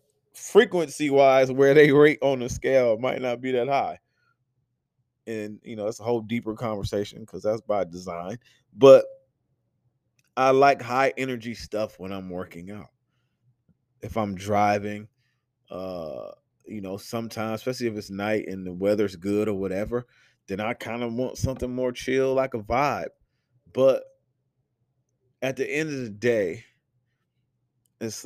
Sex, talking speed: male, 145 wpm